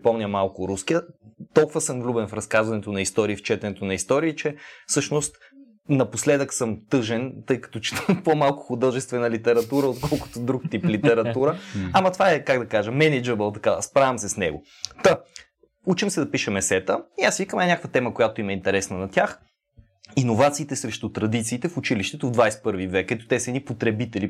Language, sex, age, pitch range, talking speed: Bulgarian, male, 20-39, 110-155 Hz, 175 wpm